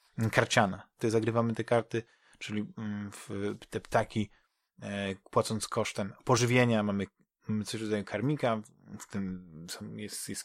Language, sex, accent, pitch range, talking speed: Polish, male, native, 105-125 Hz, 140 wpm